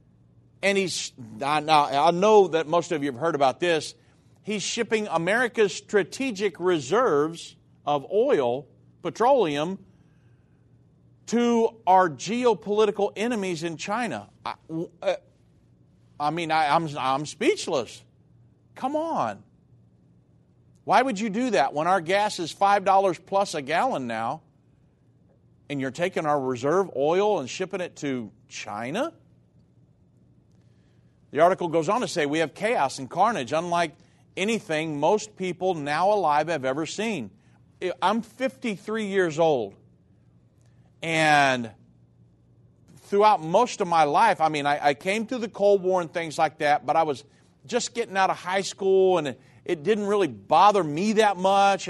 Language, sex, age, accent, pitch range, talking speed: English, male, 50-69, American, 150-200 Hz, 140 wpm